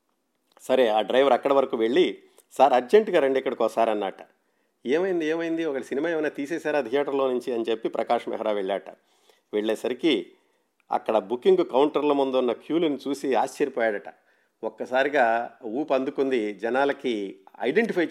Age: 50-69